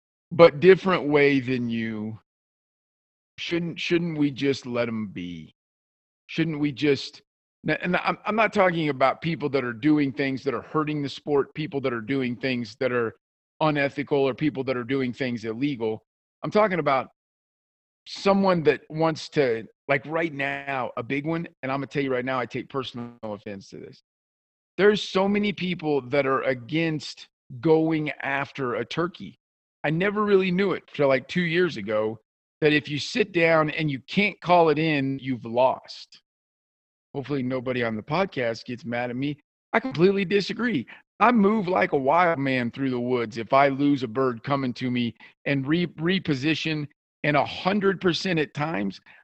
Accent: American